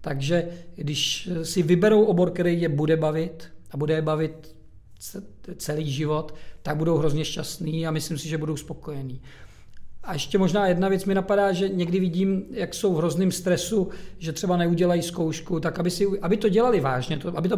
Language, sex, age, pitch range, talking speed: Czech, male, 40-59, 145-180 Hz, 180 wpm